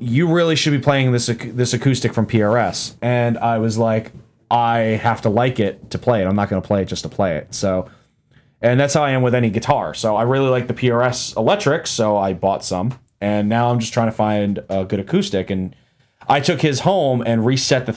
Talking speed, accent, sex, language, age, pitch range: 235 wpm, American, male, English, 20-39, 100-125 Hz